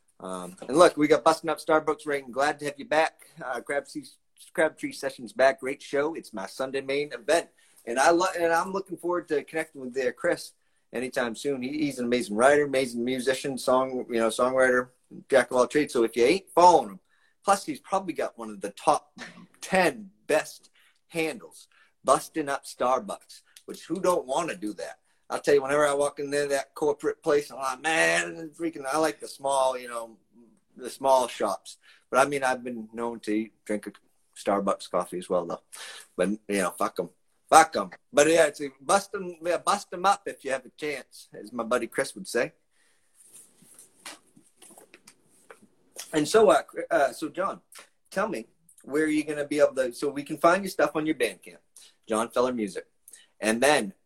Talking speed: 195 wpm